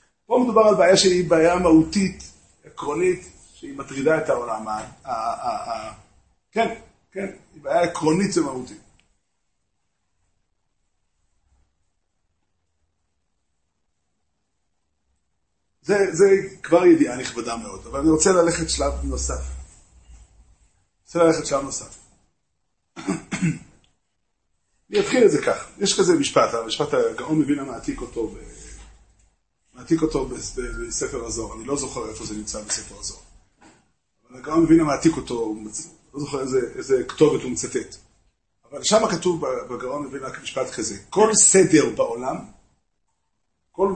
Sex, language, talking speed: male, Hebrew, 110 wpm